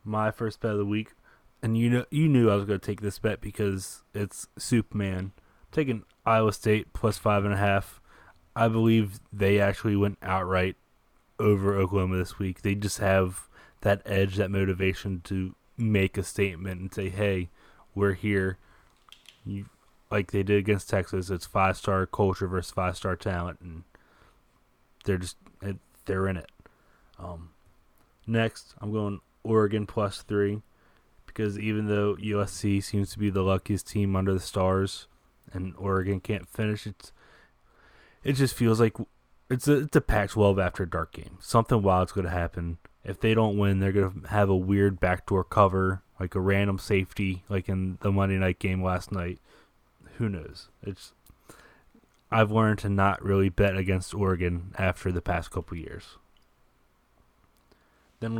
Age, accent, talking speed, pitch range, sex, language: 20-39, American, 160 wpm, 95-105 Hz, male, English